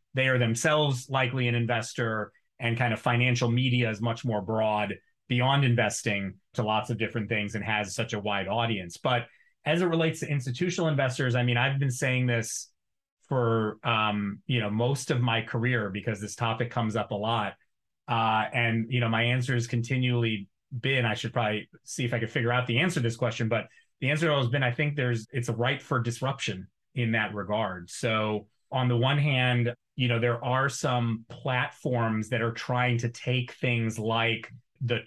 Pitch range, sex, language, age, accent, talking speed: 110-125 Hz, male, English, 30-49, American, 195 wpm